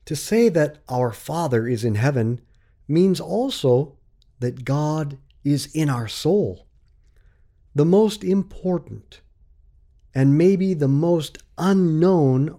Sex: male